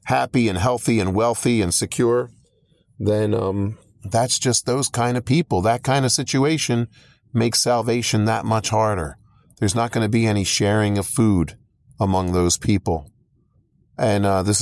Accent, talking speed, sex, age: American, 160 wpm, male, 40-59